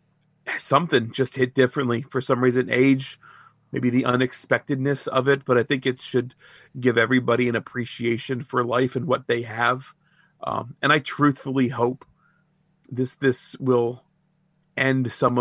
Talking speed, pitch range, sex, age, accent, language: 150 wpm, 120-130 Hz, male, 40-59, American, English